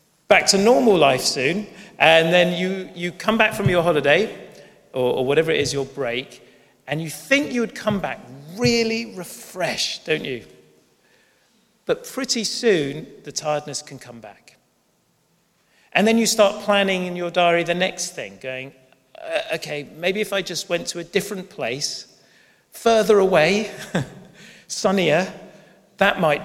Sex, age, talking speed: male, 40-59, 155 wpm